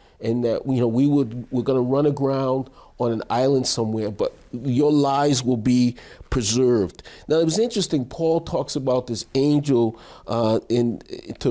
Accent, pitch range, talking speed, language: American, 115-140 Hz, 170 wpm, English